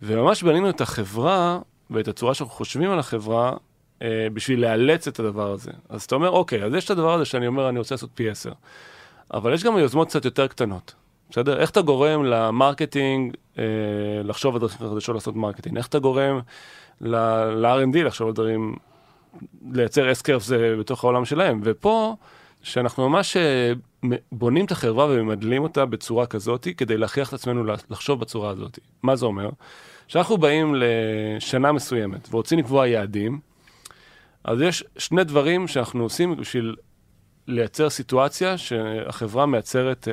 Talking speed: 150 wpm